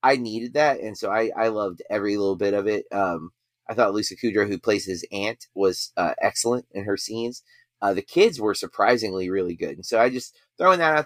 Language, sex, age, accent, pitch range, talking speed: English, male, 30-49, American, 100-120 Hz, 230 wpm